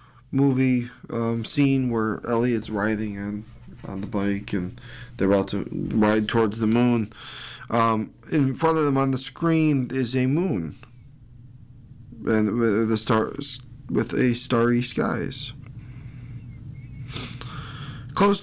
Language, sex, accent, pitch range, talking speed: English, male, American, 115-135 Hz, 125 wpm